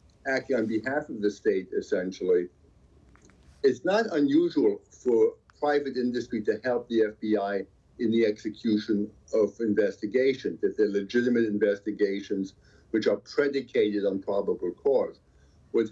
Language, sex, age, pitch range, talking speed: English, male, 60-79, 105-145 Hz, 125 wpm